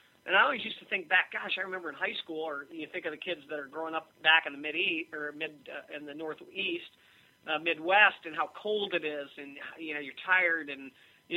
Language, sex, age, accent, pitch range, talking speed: English, male, 40-59, American, 155-190 Hz, 255 wpm